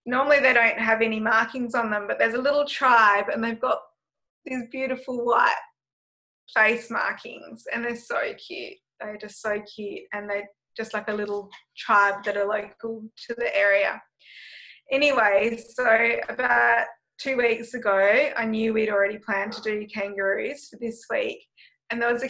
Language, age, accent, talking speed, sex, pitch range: English, 20-39, Australian, 170 wpm, female, 210-245 Hz